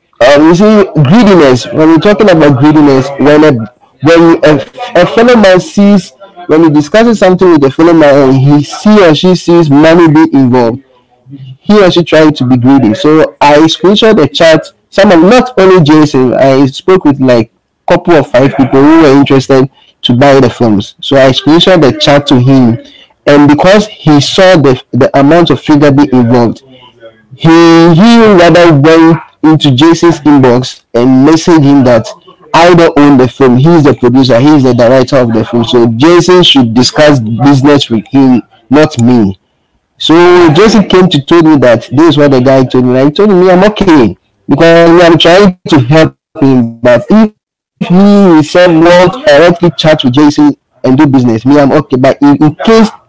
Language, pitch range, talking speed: English, 135-175 Hz, 190 wpm